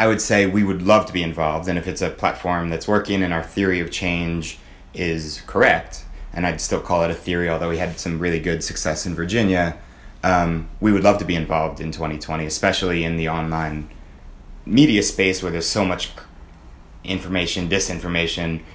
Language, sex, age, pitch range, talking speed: English, male, 30-49, 80-95 Hz, 190 wpm